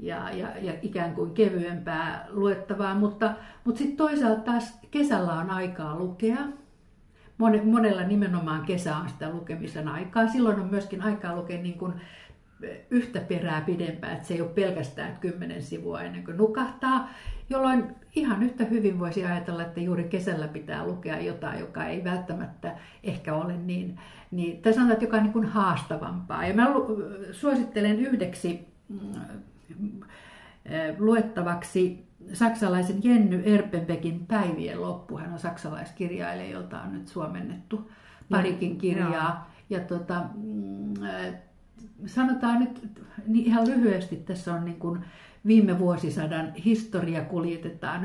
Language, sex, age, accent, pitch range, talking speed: Finnish, female, 60-79, native, 170-225 Hz, 130 wpm